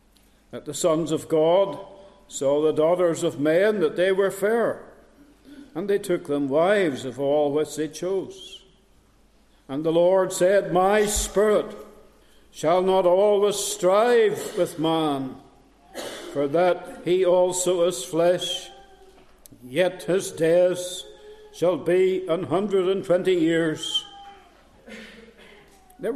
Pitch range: 150-205 Hz